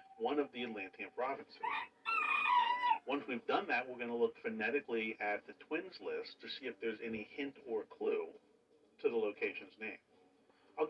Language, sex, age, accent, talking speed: English, male, 50-69, American, 170 wpm